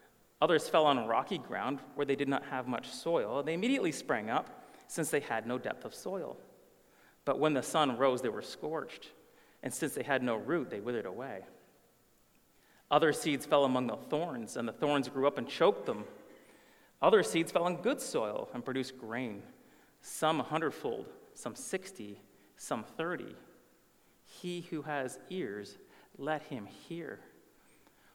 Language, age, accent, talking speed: English, 30-49, American, 165 wpm